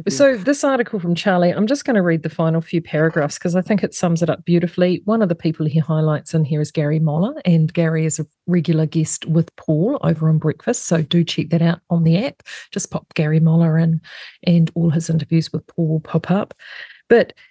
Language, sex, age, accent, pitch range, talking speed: English, female, 40-59, Australian, 160-190 Hz, 230 wpm